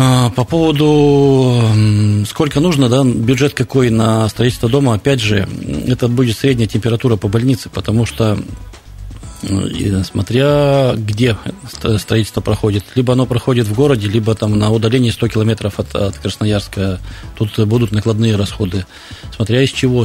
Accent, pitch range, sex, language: native, 100-120 Hz, male, Russian